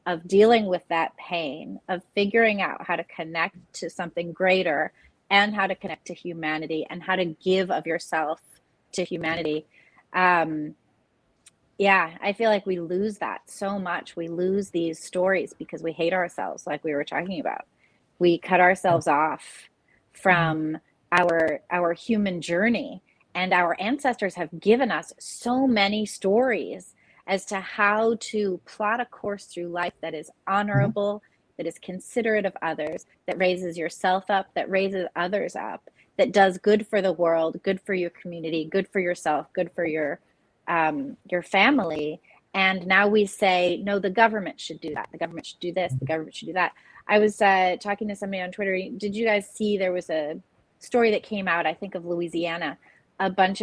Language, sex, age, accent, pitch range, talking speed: English, female, 30-49, American, 170-200 Hz, 175 wpm